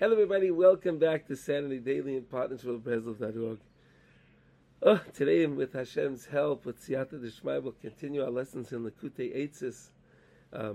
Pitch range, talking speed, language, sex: 120-160 Hz, 150 wpm, English, male